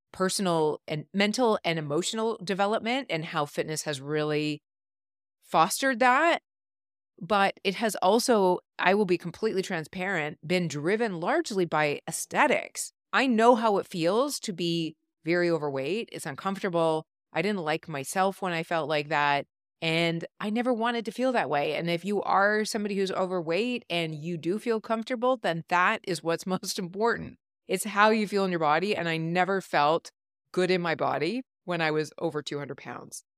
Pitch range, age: 155-210 Hz, 30-49